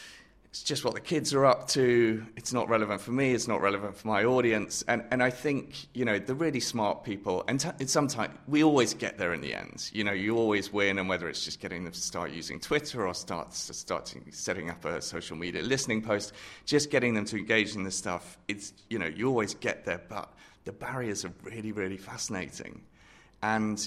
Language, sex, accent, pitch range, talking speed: English, male, British, 95-115 Hz, 220 wpm